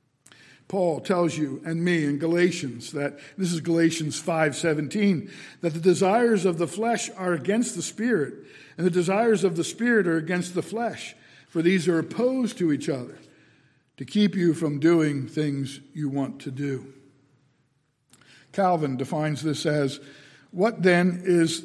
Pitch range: 135-175 Hz